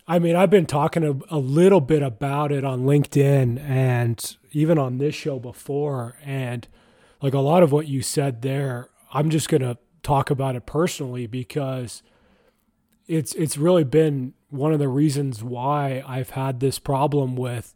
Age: 30-49